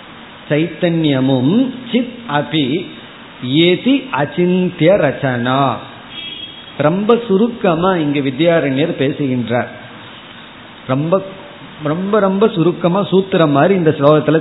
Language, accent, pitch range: Tamil, native, 140-190 Hz